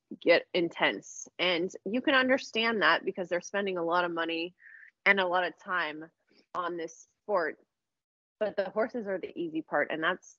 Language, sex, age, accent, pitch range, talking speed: English, female, 20-39, American, 165-215 Hz, 180 wpm